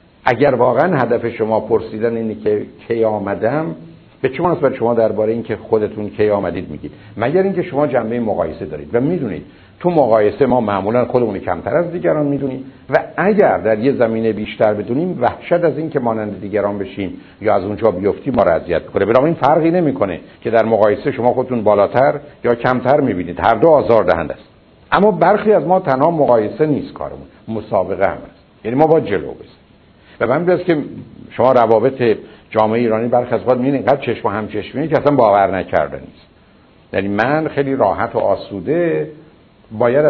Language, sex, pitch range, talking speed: Persian, male, 100-135 Hz, 175 wpm